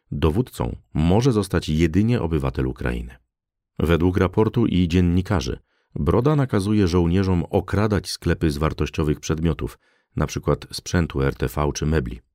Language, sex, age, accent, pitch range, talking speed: Polish, male, 40-59, native, 75-95 Hz, 110 wpm